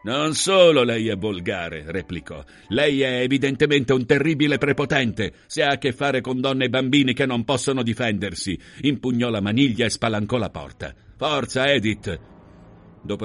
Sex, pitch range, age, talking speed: male, 100-125 Hz, 50-69, 160 wpm